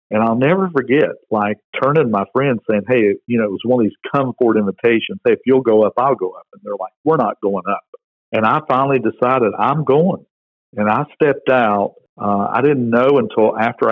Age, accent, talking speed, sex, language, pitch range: 50-69, American, 220 wpm, male, English, 105-140 Hz